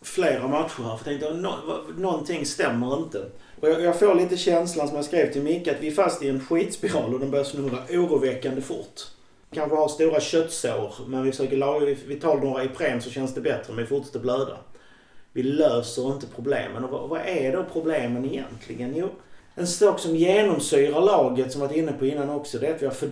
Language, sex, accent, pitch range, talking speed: Swedish, male, native, 125-155 Hz, 215 wpm